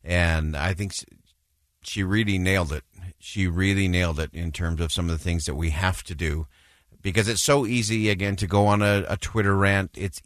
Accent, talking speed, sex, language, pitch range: American, 210 wpm, male, English, 85-110 Hz